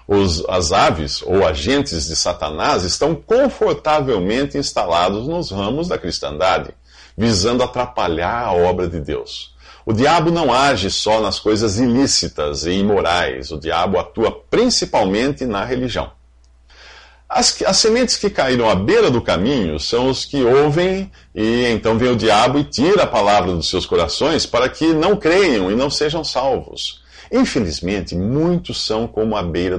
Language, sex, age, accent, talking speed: English, male, 50-69, Brazilian, 150 wpm